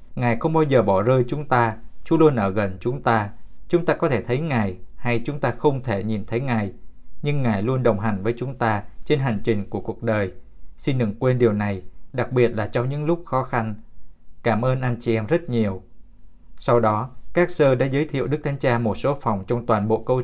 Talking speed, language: 235 wpm, Vietnamese